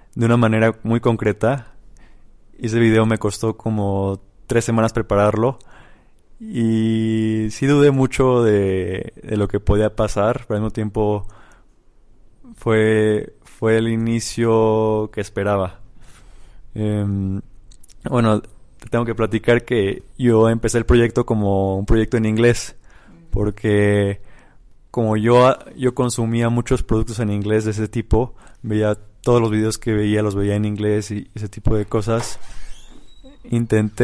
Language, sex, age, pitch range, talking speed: Spanish, male, 20-39, 105-120 Hz, 135 wpm